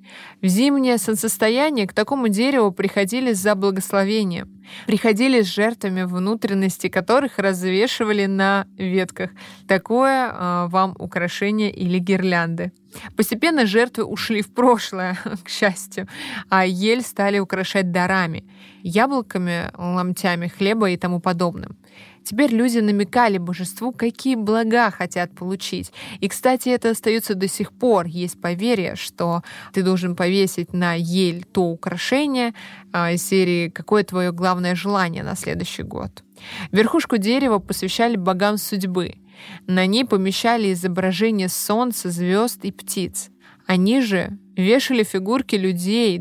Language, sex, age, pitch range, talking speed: Russian, female, 20-39, 180-220 Hz, 120 wpm